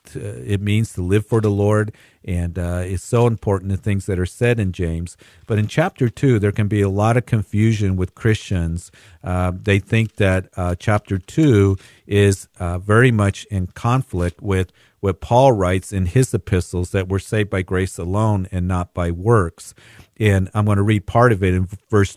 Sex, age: male, 50-69